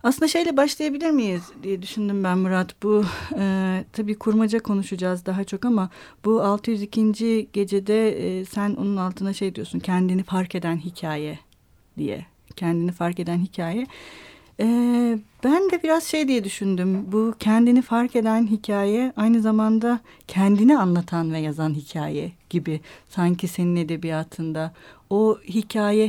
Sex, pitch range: female, 180-230 Hz